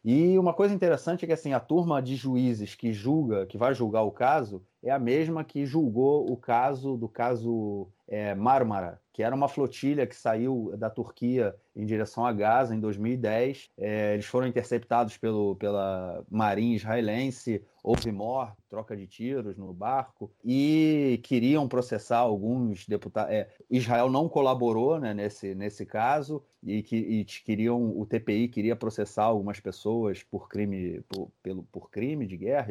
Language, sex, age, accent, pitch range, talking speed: Portuguese, male, 30-49, Brazilian, 105-130 Hz, 165 wpm